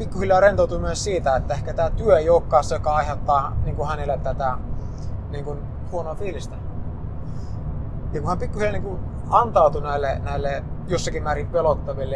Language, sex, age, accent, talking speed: Finnish, male, 30-49, native, 130 wpm